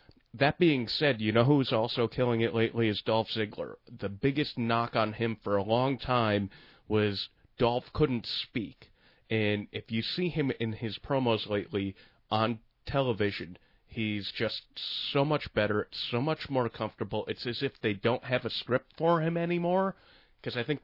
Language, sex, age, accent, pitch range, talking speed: English, male, 30-49, American, 105-125 Hz, 175 wpm